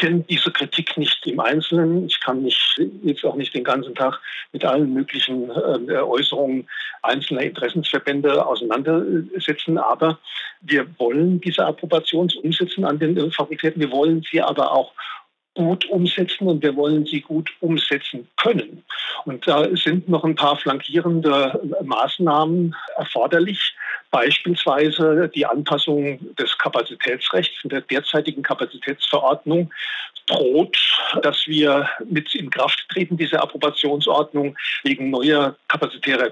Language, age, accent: German, 50-69, German